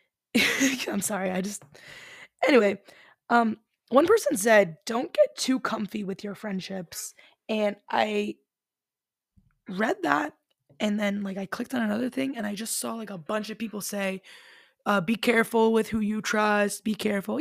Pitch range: 185-230 Hz